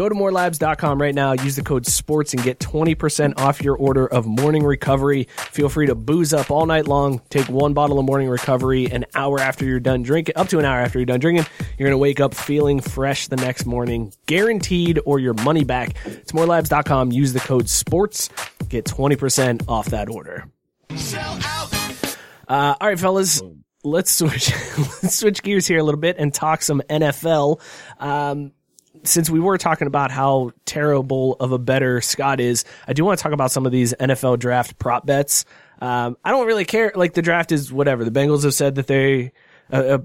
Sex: male